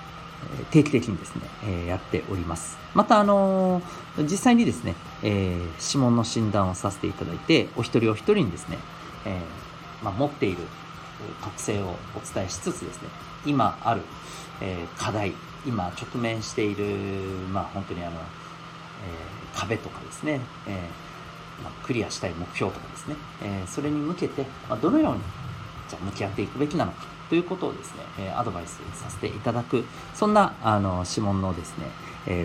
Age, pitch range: 40-59, 90-140 Hz